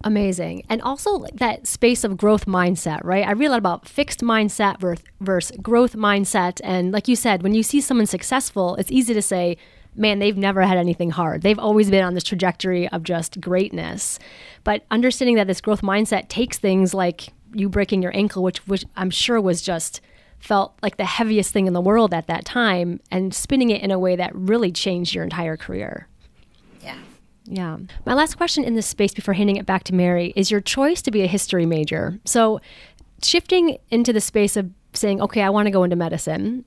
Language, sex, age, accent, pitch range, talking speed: English, female, 20-39, American, 180-220 Hz, 205 wpm